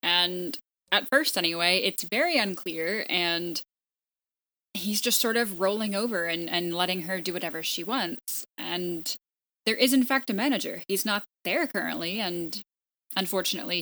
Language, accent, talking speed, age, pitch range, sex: English, American, 150 wpm, 10-29, 175-230 Hz, female